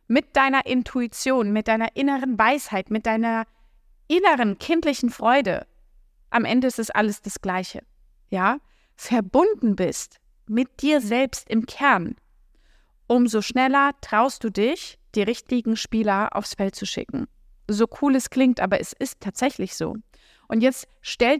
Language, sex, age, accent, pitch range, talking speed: German, female, 30-49, German, 220-275 Hz, 145 wpm